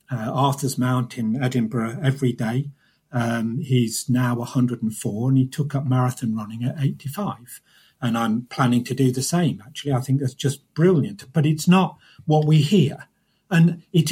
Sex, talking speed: male, 170 wpm